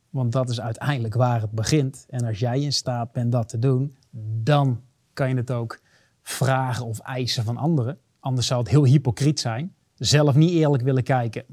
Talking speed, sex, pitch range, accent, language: 195 wpm, male, 125-155 Hz, Dutch, Dutch